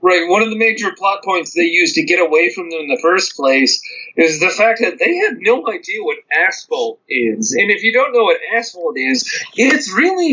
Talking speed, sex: 225 wpm, male